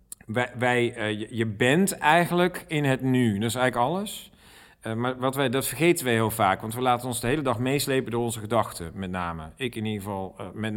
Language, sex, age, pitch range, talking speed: Dutch, male, 40-59, 110-145 Hz, 210 wpm